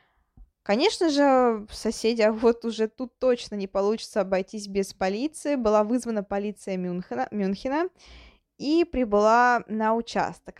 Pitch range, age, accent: 195-250 Hz, 20-39, native